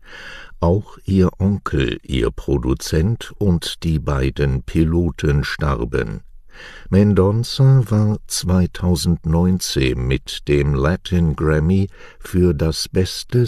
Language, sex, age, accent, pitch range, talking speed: English, male, 60-79, German, 70-90 Hz, 90 wpm